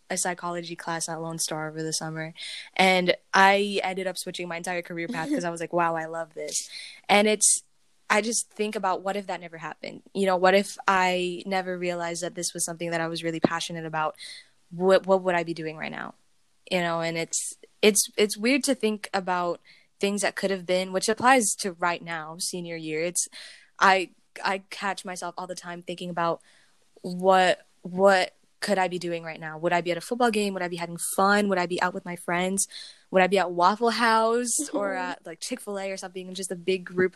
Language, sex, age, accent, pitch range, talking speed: English, female, 10-29, American, 170-200 Hz, 225 wpm